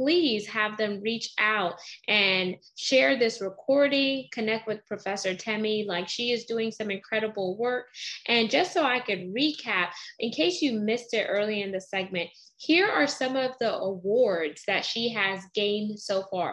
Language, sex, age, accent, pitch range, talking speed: English, female, 10-29, American, 195-265 Hz, 170 wpm